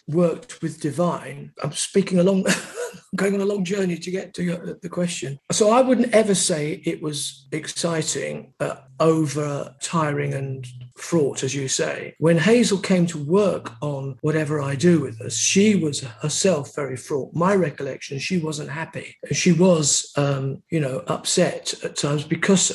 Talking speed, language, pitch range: 165 wpm, English, 145-180 Hz